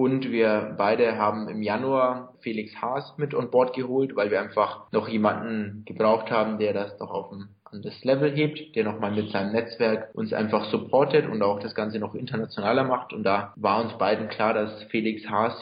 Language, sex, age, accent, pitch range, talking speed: German, male, 20-39, German, 105-135 Hz, 195 wpm